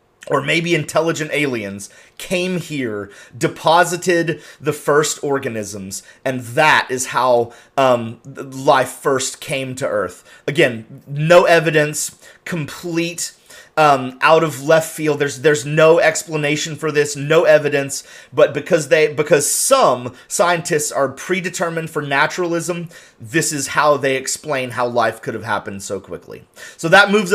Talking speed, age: 135 wpm, 30-49